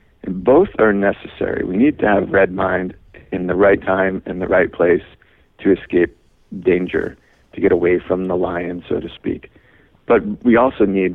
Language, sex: English, male